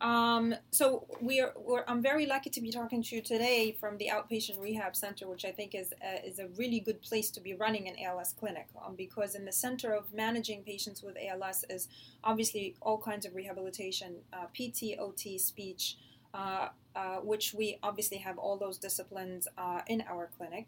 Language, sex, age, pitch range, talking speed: English, female, 20-39, 185-220 Hz, 195 wpm